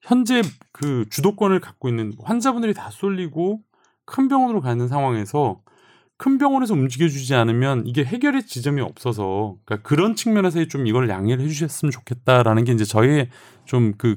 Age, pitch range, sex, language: 30-49, 115-170 Hz, male, Korean